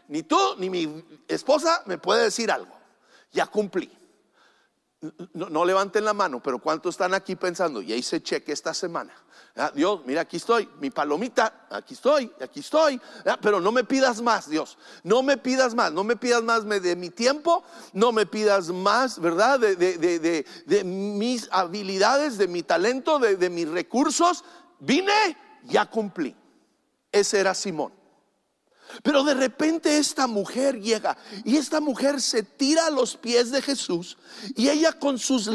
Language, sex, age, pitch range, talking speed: English, male, 50-69, 205-280 Hz, 160 wpm